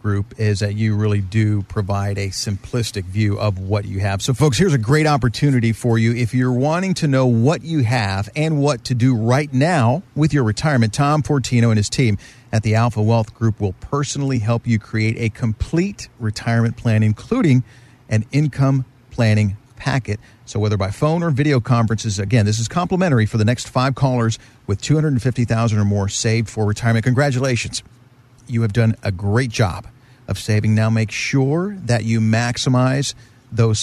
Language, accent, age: English, American, 50-69